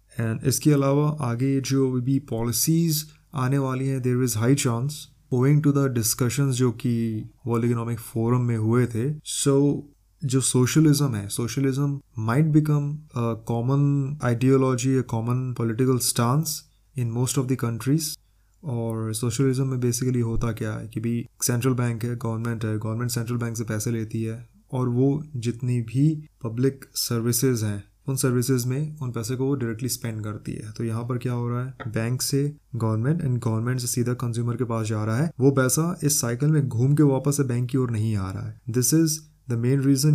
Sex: male